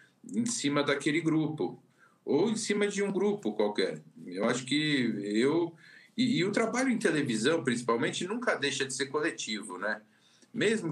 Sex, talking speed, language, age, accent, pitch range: male, 155 wpm, Portuguese, 50-69, Brazilian, 120-155 Hz